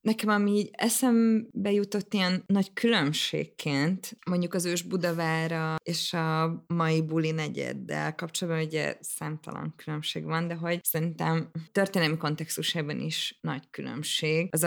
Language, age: Hungarian, 20-39